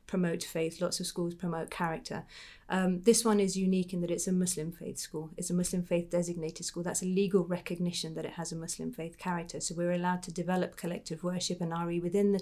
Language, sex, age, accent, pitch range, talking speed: English, female, 30-49, British, 175-195 Hz, 225 wpm